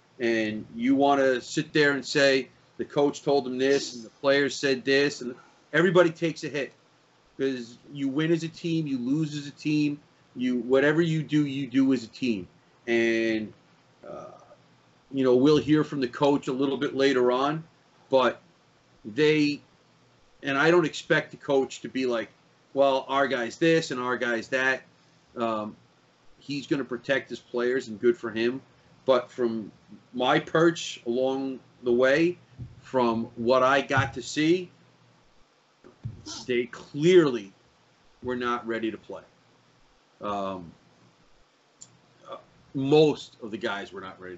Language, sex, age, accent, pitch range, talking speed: English, male, 40-59, American, 120-145 Hz, 155 wpm